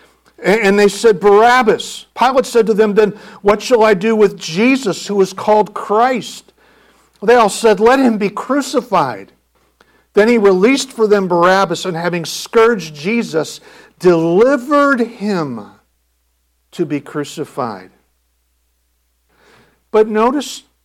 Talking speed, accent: 125 wpm, American